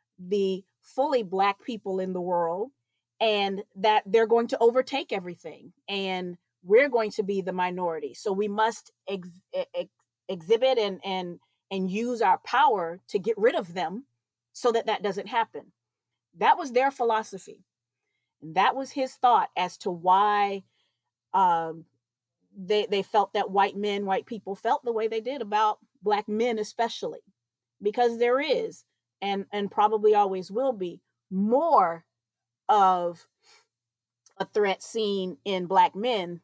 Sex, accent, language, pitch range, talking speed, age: female, American, English, 175-230 Hz, 145 wpm, 30-49